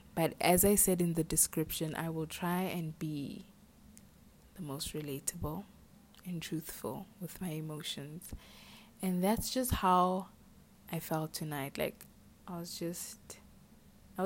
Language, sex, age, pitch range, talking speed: English, female, 20-39, 155-180 Hz, 135 wpm